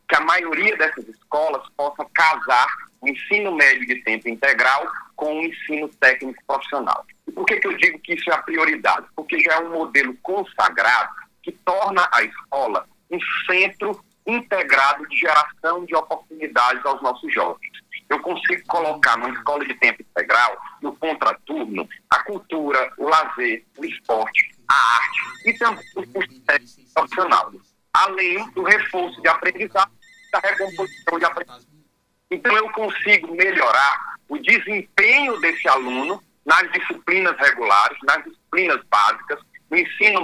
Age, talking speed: 40-59, 145 wpm